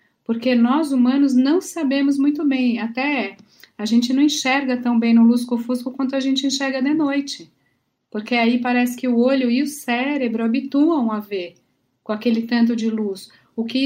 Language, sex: Portuguese, female